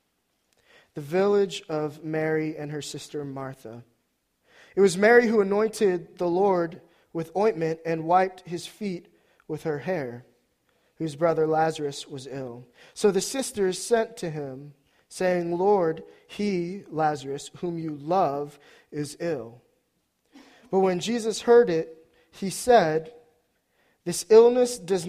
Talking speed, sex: 130 wpm, male